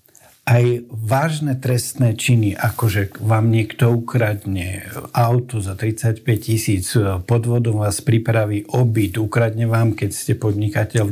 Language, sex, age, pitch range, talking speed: Slovak, male, 60-79, 105-130 Hz, 130 wpm